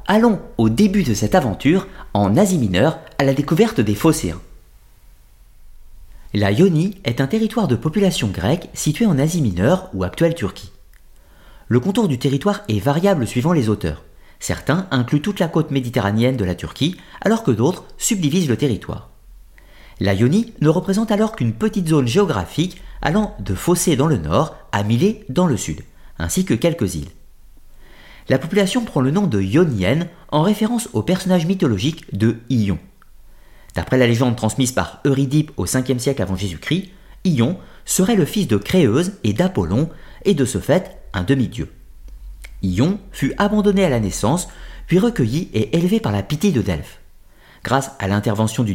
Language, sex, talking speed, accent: French, male, 165 wpm, French